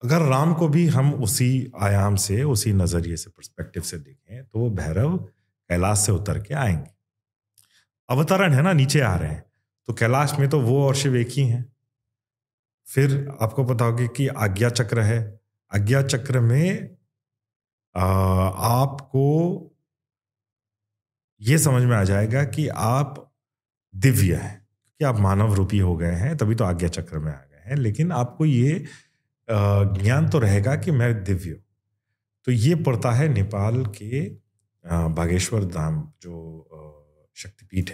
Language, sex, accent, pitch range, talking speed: Hindi, male, native, 100-135 Hz, 150 wpm